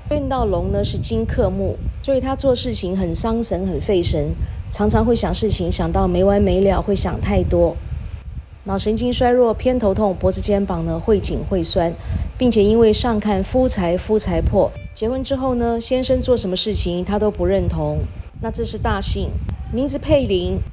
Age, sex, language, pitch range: 30-49, female, Chinese, 170-235 Hz